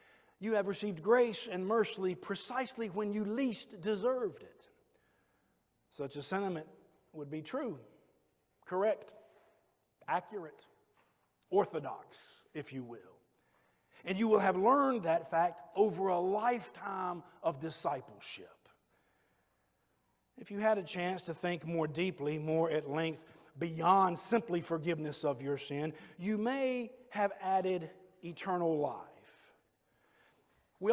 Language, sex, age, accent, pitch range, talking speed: English, male, 50-69, American, 160-220 Hz, 120 wpm